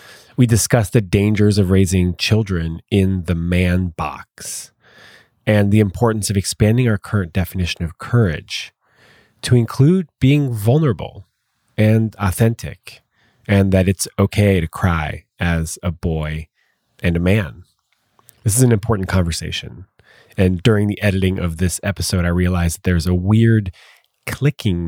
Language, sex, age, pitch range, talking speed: English, male, 30-49, 90-115 Hz, 140 wpm